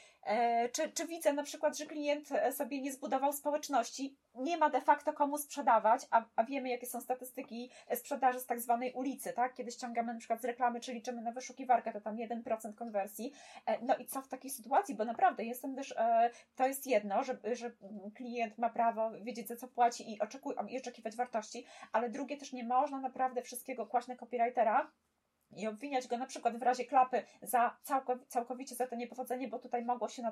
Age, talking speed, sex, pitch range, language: 20-39, 190 wpm, female, 235-295 Hz, Polish